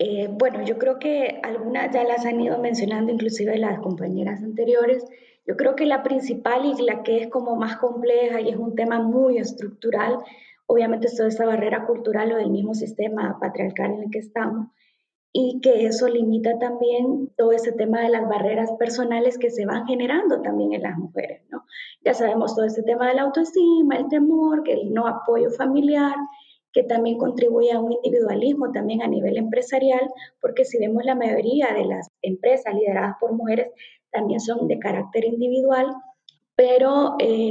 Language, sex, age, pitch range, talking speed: Spanish, female, 20-39, 220-255 Hz, 180 wpm